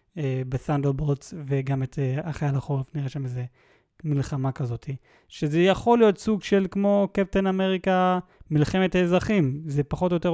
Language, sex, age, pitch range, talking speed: Hebrew, male, 20-39, 135-175 Hz, 150 wpm